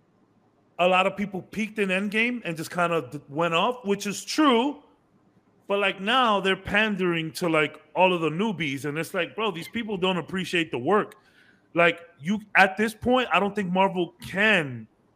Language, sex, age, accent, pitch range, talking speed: English, male, 30-49, American, 150-205 Hz, 190 wpm